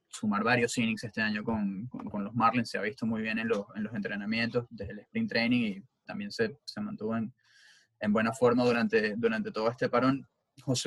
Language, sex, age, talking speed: English, male, 20-39, 215 wpm